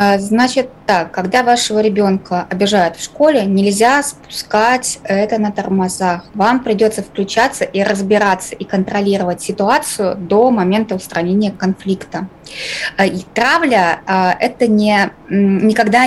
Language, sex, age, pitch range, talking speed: Russian, female, 20-39, 190-225 Hz, 110 wpm